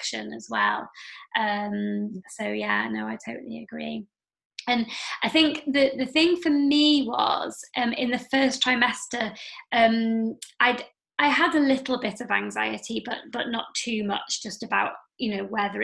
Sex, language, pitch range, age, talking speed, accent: female, English, 215-250 Hz, 20-39, 160 wpm, British